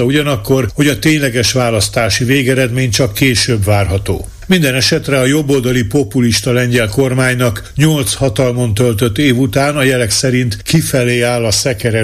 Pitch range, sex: 115-135 Hz, male